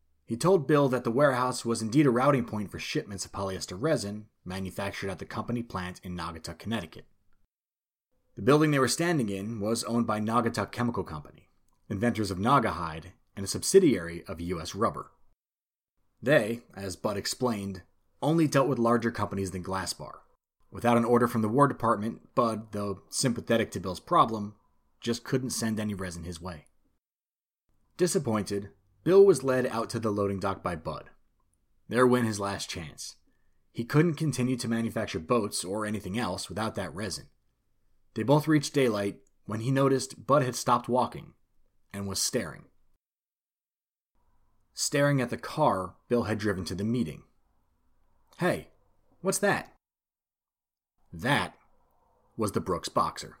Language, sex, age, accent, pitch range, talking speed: English, male, 30-49, American, 95-125 Hz, 155 wpm